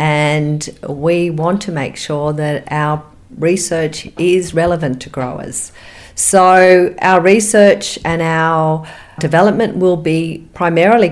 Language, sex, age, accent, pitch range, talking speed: English, female, 40-59, Australian, 155-185 Hz, 120 wpm